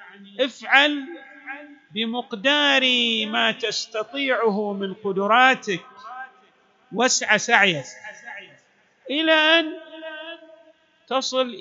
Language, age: Arabic, 50-69